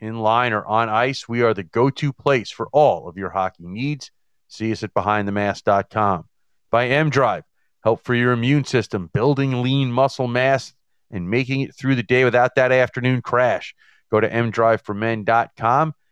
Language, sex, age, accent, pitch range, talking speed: English, male, 40-59, American, 110-135 Hz, 165 wpm